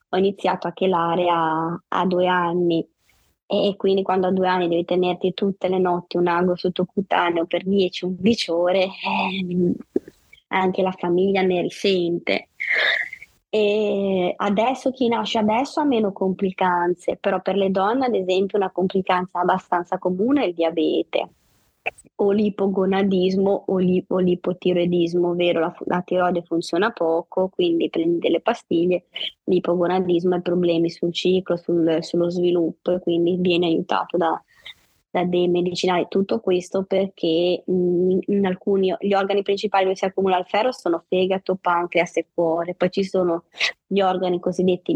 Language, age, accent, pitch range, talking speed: Italian, 20-39, native, 175-190 Hz, 145 wpm